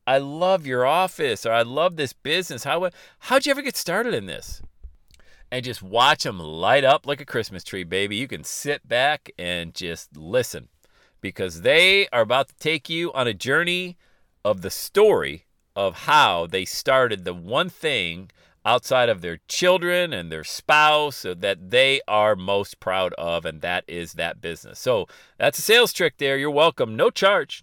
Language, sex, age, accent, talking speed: English, male, 40-59, American, 180 wpm